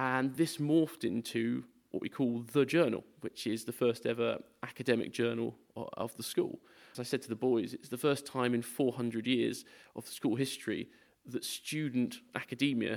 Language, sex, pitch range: English, male, 120-145 Hz